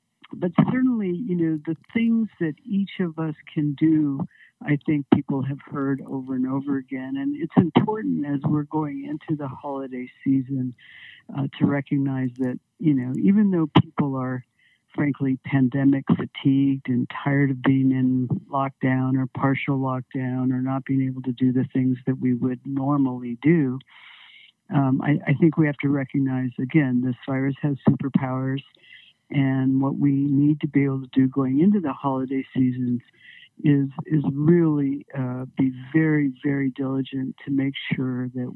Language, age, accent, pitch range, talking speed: English, 60-79, American, 130-145 Hz, 165 wpm